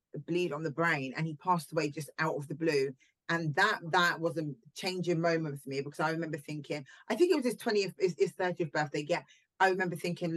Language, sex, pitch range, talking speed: English, female, 155-185 Hz, 230 wpm